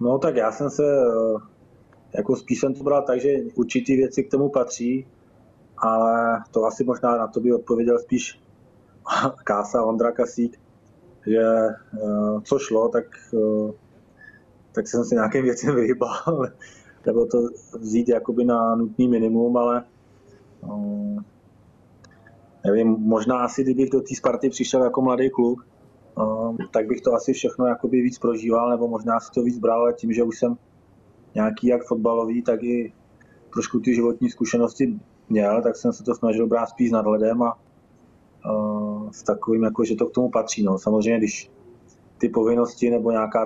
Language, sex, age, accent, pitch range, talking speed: Czech, male, 20-39, native, 110-125 Hz, 155 wpm